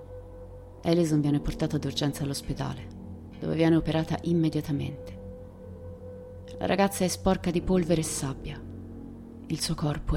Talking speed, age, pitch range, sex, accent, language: 120 wpm, 30-49, 100-170 Hz, female, native, Italian